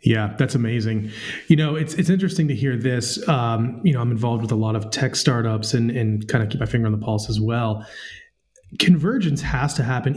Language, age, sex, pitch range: English, 30-49, male, 120-155 Hz